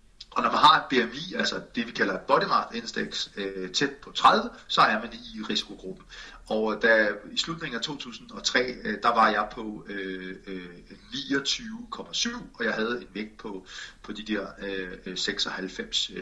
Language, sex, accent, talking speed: Danish, male, native, 155 wpm